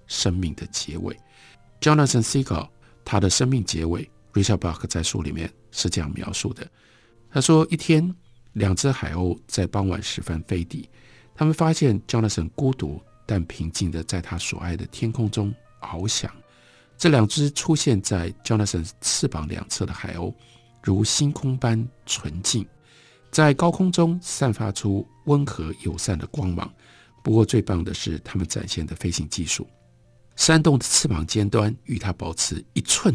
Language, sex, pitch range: Chinese, male, 95-125 Hz